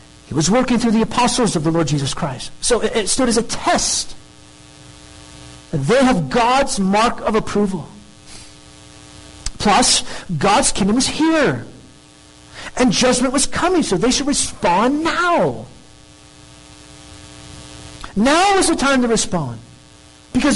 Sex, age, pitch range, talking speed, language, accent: male, 50-69, 175-280 Hz, 130 wpm, English, American